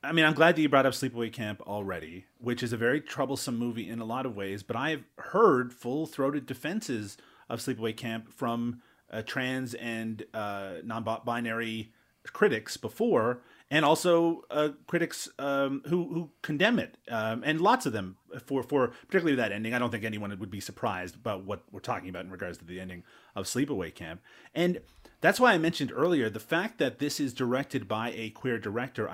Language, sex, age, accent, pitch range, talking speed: English, male, 30-49, American, 110-140 Hz, 190 wpm